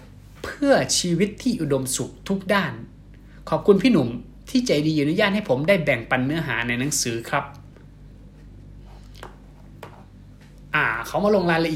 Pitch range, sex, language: 130-180 Hz, male, Thai